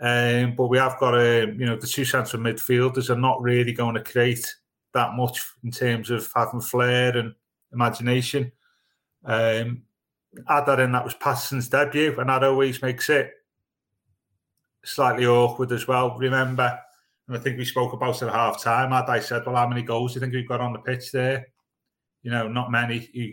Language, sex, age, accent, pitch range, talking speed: English, male, 30-49, British, 120-140 Hz, 195 wpm